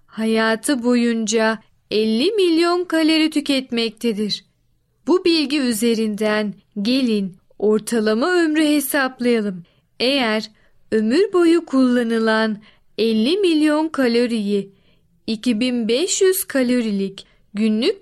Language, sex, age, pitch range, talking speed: Turkish, female, 30-49, 215-285 Hz, 75 wpm